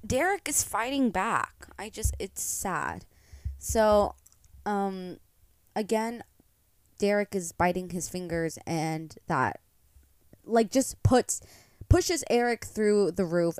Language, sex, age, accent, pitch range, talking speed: English, female, 20-39, American, 150-200 Hz, 115 wpm